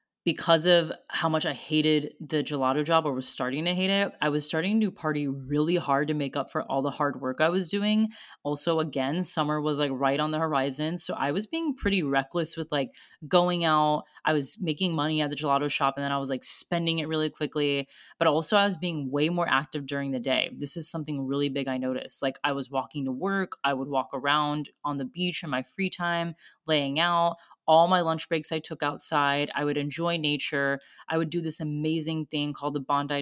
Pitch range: 140-170 Hz